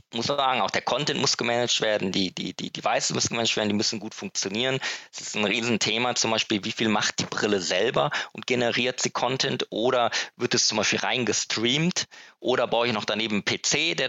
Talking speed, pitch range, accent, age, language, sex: 215 wpm, 110-125 Hz, German, 20-39, German, male